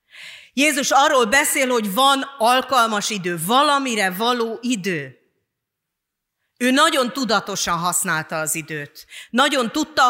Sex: female